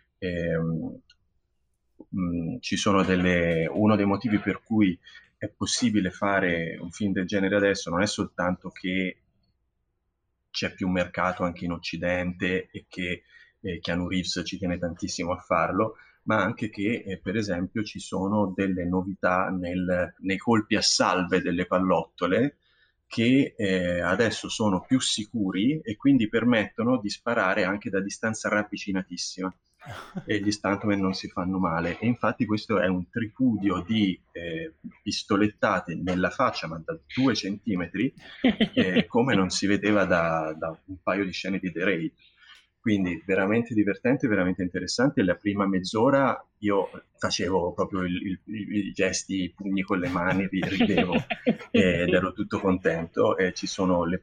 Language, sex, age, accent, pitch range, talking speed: Italian, male, 30-49, native, 90-105 Hz, 155 wpm